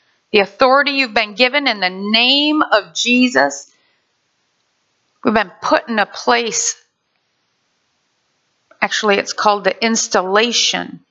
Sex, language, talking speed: female, English, 115 wpm